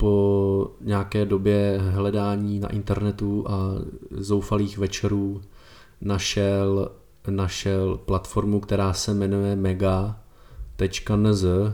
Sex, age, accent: male, 20-39, native